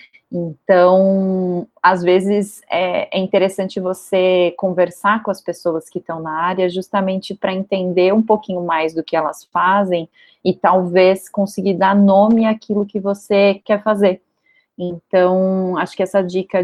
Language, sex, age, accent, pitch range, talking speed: Portuguese, female, 30-49, Brazilian, 175-200 Hz, 140 wpm